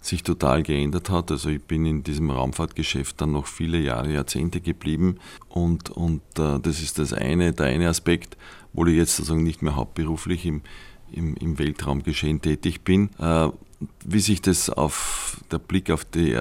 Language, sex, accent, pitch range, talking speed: German, male, Austrian, 75-85 Hz, 175 wpm